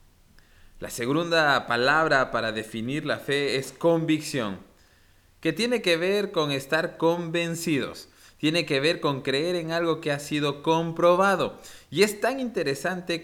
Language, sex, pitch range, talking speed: Spanish, male, 115-165 Hz, 140 wpm